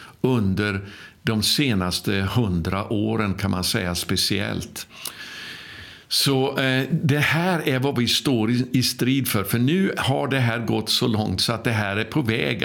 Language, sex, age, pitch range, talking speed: Swedish, male, 60-79, 105-125 Hz, 165 wpm